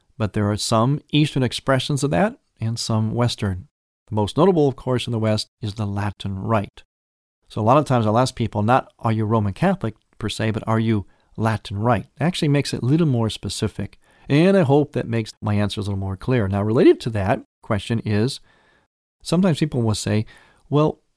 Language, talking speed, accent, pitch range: English, 205 wpm, American, 105-140 Hz